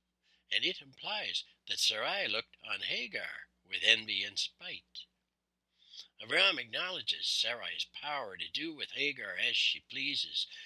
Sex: male